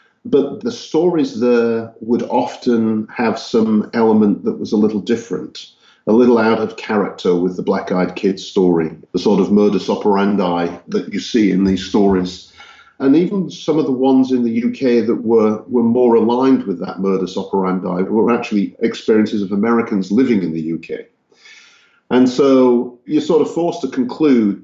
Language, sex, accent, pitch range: English, male, British, 95-120 Hz